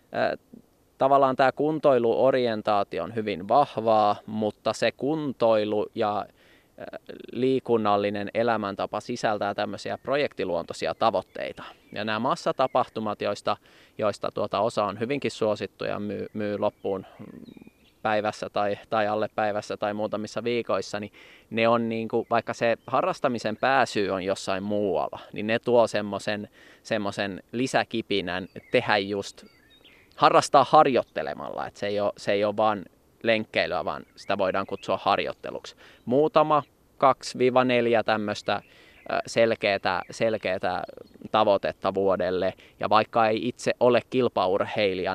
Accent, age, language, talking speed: native, 20-39, Finnish, 110 wpm